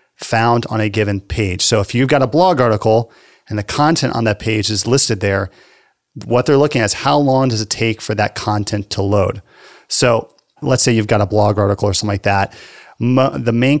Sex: male